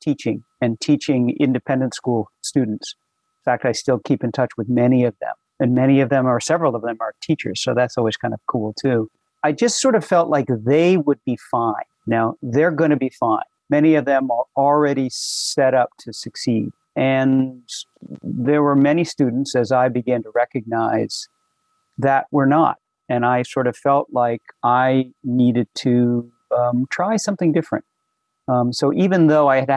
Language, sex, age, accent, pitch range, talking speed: English, male, 50-69, American, 125-160 Hz, 185 wpm